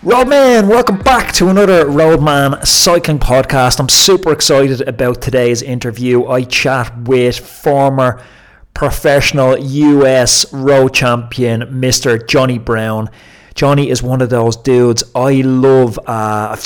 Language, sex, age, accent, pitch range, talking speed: English, male, 30-49, British, 115-135 Hz, 125 wpm